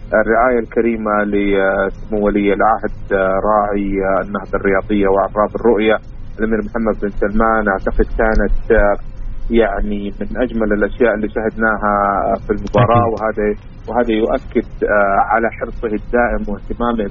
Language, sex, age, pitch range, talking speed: Arabic, male, 30-49, 105-125 Hz, 110 wpm